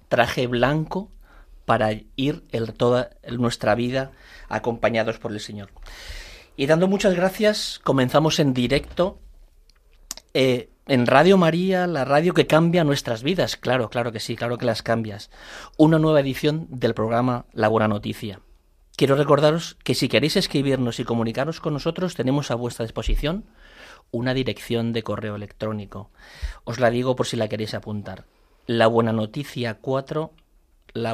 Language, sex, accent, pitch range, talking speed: Spanish, male, Spanish, 115-145 Hz, 150 wpm